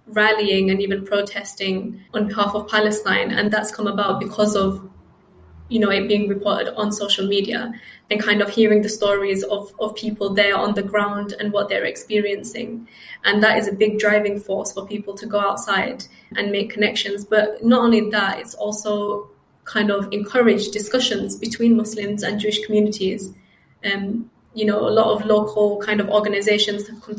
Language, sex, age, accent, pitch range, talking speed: English, female, 20-39, British, 200-215 Hz, 180 wpm